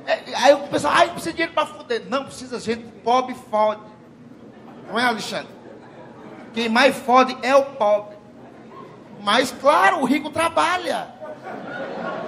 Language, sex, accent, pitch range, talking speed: Portuguese, male, Brazilian, 240-325 Hz, 145 wpm